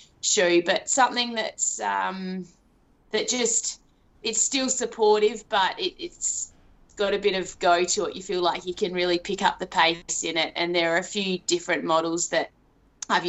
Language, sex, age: English, female, 20-39